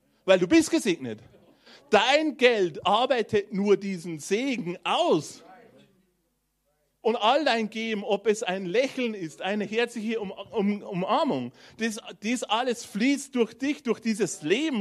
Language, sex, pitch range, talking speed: German, male, 190-245 Hz, 140 wpm